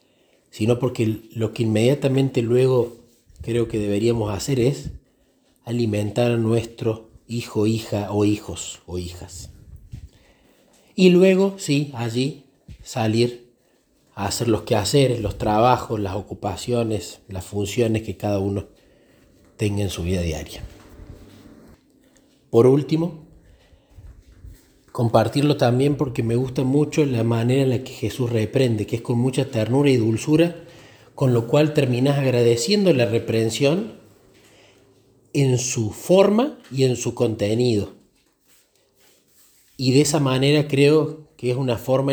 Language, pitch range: Spanish, 105-135 Hz